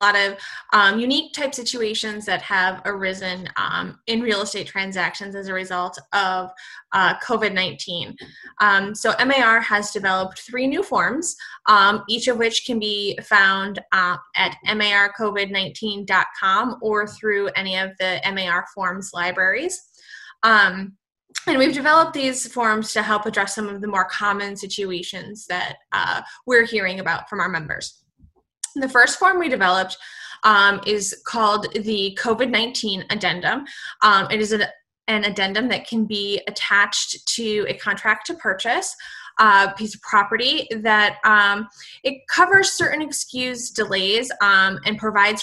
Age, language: 20-39, English